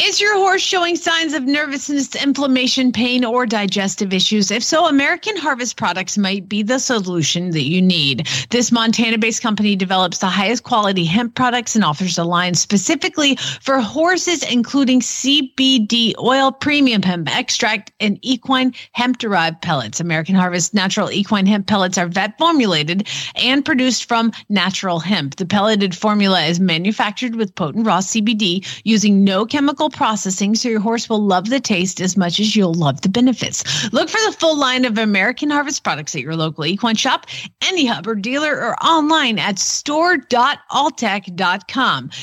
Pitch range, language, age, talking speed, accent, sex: 185-260 Hz, English, 40-59, 160 wpm, American, female